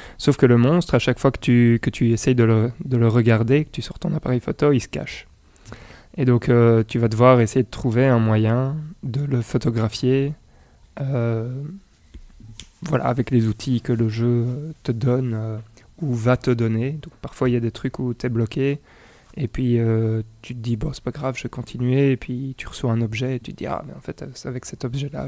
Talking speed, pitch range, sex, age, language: 230 wpm, 115-135 Hz, male, 20-39, French